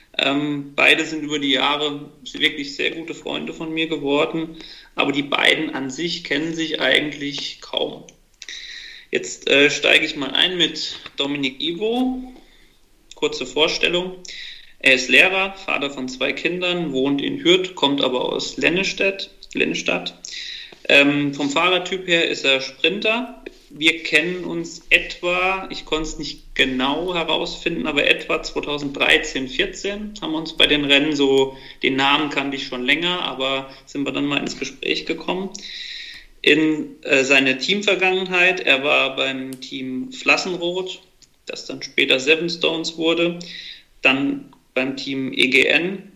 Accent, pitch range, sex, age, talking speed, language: German, 140-185 Hz, male, 40-59, 140 wpm, German